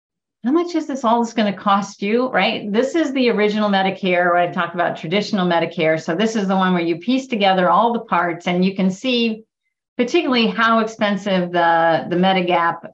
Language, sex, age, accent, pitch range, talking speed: English, female, 40-59, American, 165-210 Hz, 205 wpm